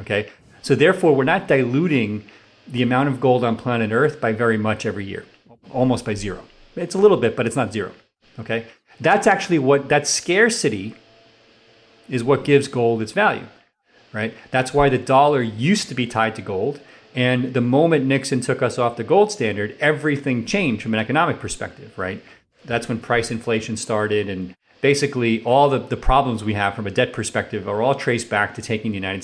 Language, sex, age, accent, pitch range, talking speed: English, male, 40-59, American, 110-135 Hz, 195 wpm